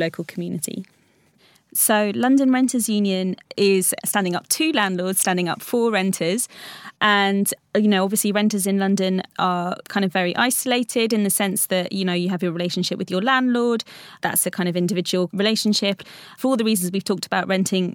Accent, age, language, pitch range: British, 20-39, English, 185-210 Hz